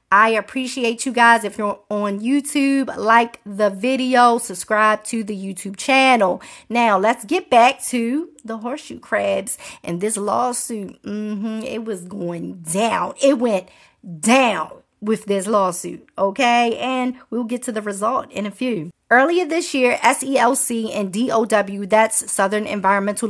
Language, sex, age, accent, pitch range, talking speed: English, female, 40-59, American, 210-250 Hz, 150 wpm